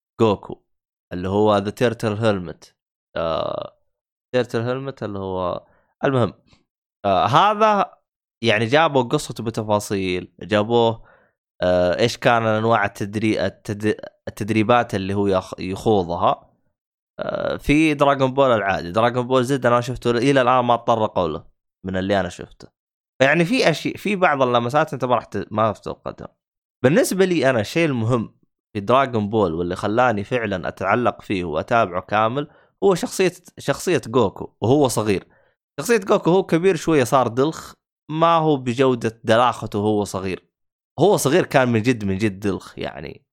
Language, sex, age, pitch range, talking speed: Arabic, male, 20-39, 105-140 Hz, 140 wpm